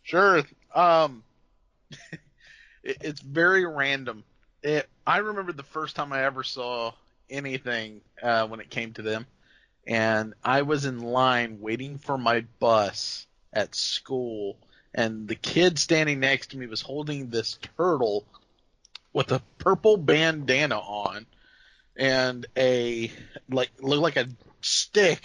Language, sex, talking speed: English, male, 135 wpm